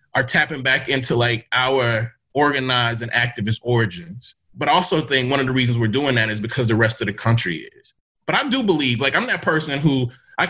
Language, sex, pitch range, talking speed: English, male, 125-165 Hz, 225 wpm